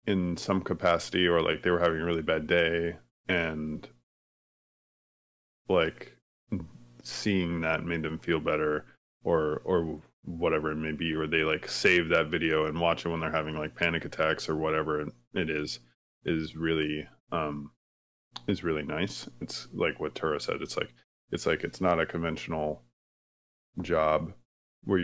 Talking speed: 160 wpm